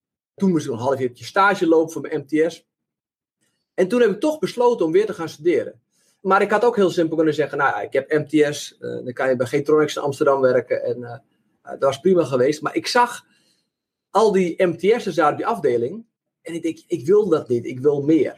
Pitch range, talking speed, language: 150-240 Hz, 230 wpm, Dutch